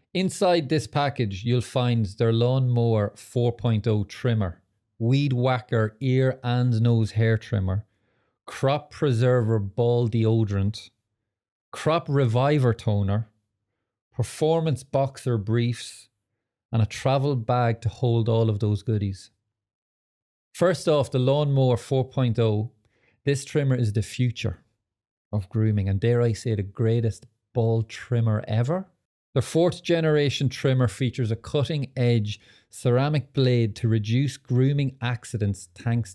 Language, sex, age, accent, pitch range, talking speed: English, male, 30-49, Irish, 110-130 Hz, 120 wpm